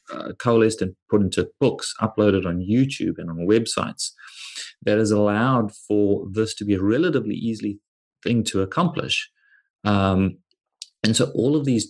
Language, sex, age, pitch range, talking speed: English, male, 30-49, 95-115 Hz, 155 wpm